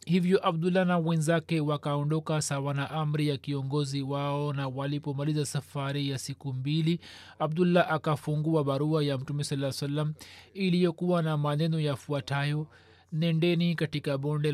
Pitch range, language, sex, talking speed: 145-170 Hz, Swahili, male, 130 wpm